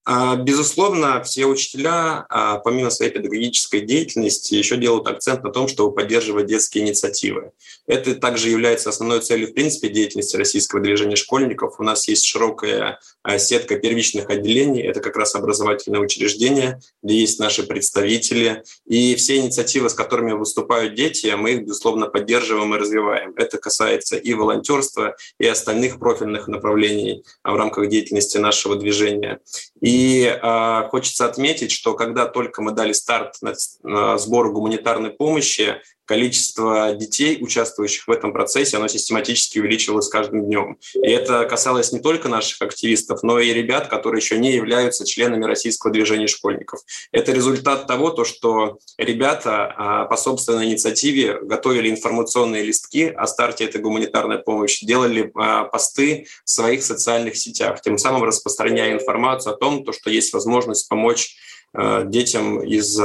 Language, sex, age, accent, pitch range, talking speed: Russian, male, 20-39, native, 105-130 Hz, 140 wpm